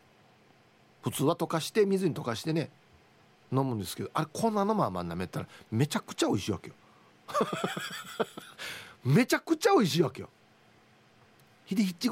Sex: male